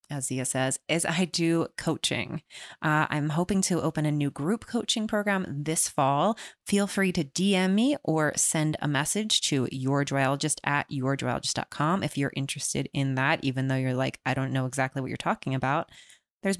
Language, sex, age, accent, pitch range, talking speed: English, female, 20-39, American, 150-195 Hz, 185 wpm